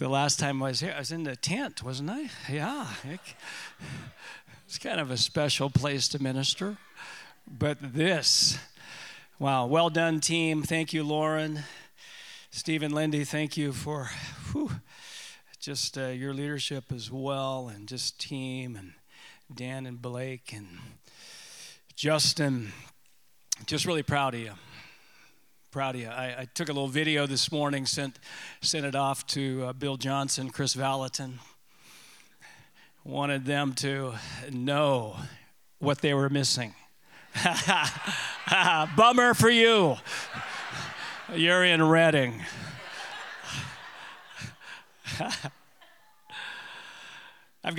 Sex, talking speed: male, 115 wpm